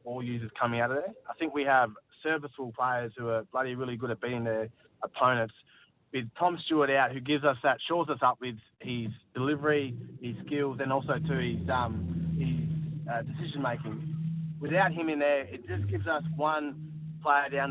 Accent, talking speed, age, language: Australian, 190 wpm, 20-39, English